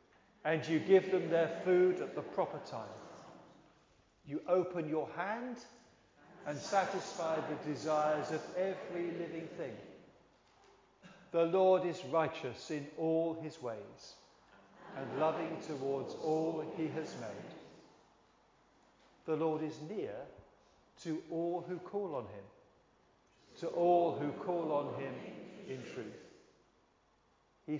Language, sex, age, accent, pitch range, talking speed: English, male, 40-59, British, 160-190 Hz, 115 wpm